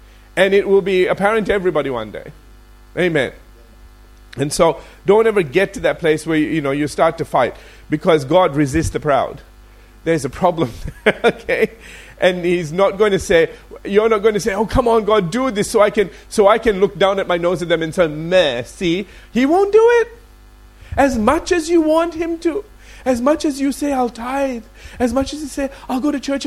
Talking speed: 215 wpm